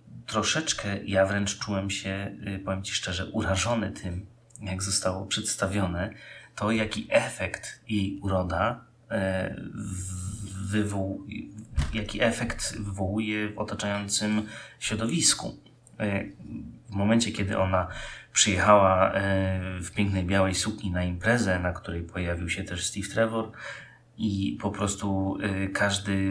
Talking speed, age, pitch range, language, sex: 105 wpm, 30-49, 95-105 Hz, Polish, male